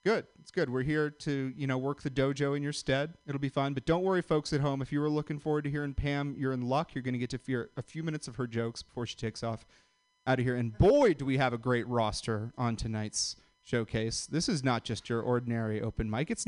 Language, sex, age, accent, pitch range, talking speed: English, male, 30-49, American, 120-155 Hz, 260 wpm